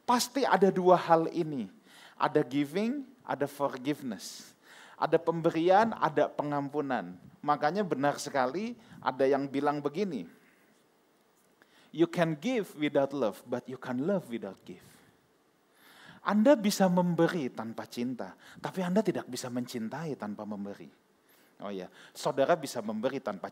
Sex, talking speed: male, 125 wpm